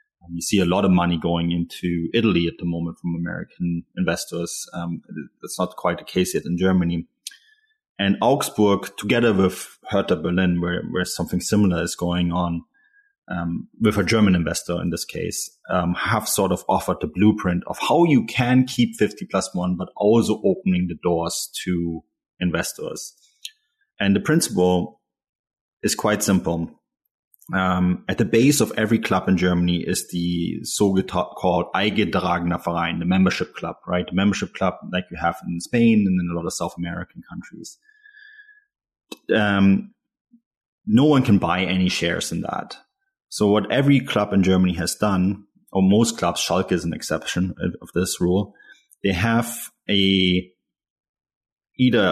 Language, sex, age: English, male, 30-49